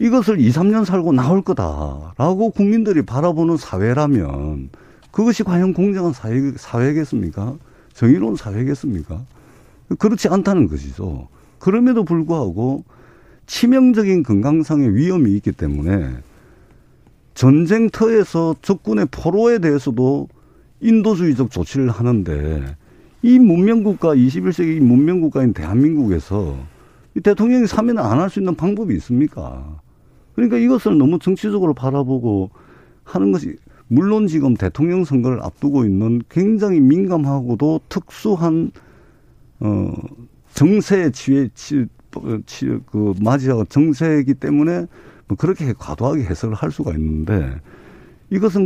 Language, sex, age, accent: Korean, male, 50-69, native